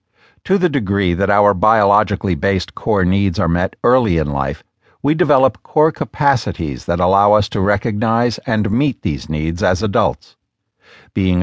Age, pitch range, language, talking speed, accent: 60-79, 90-125 Hz, English, 150 wpm, American